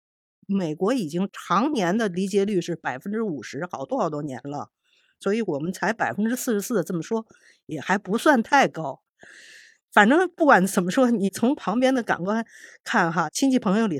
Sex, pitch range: female, 170-230 Hz